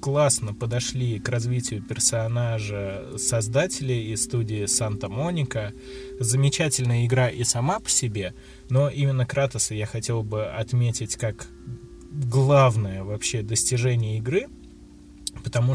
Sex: male